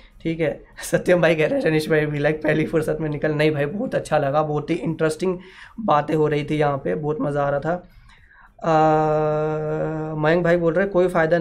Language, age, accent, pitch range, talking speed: Hindi, 20-39, native, 145-165 Hz, 215 wpm